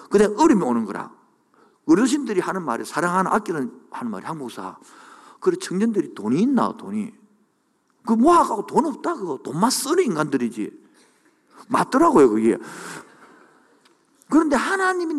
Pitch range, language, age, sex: 200-335 Hz, Korean, 50-69, male